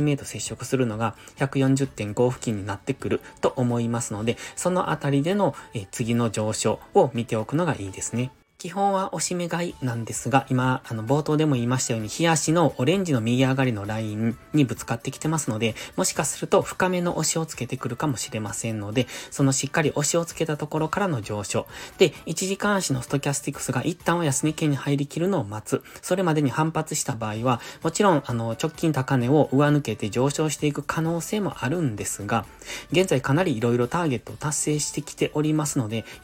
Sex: male